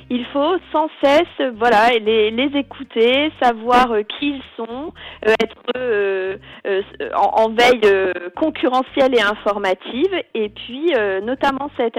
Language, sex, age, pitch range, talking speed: French, female, 40-59, 215-255 Hz, 140 wpm